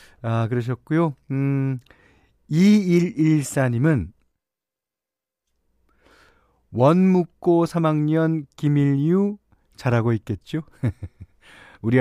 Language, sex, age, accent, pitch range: Korean, male, 40-59, native, 105-160 Hz